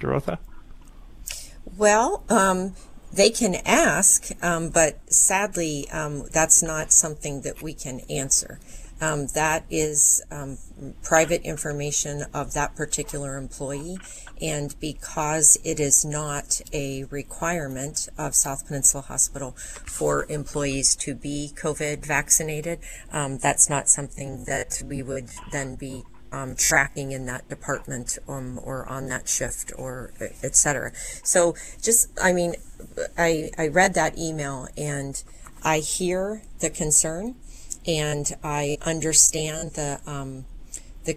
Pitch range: 140-165 Hz